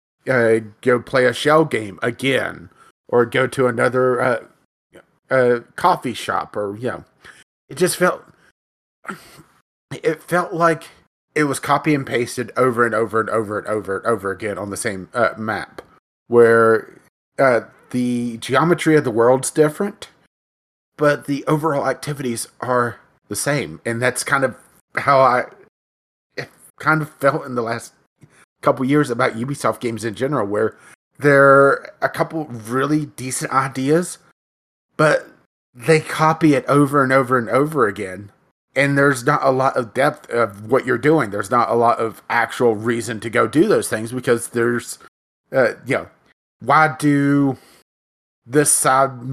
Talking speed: 155 wpm